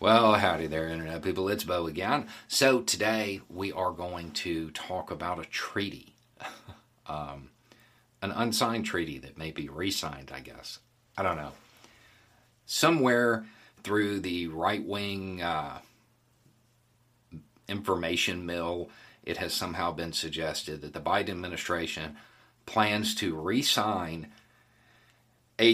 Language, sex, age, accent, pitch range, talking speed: English, male, 40-59, American, 80-115 Hz, 115 wpm